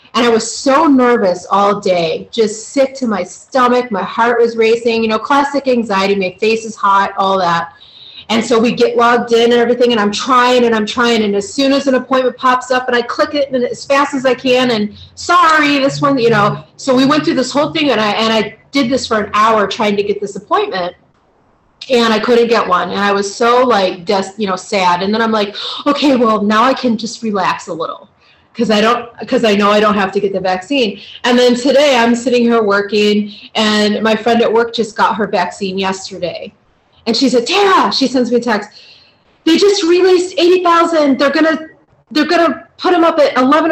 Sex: female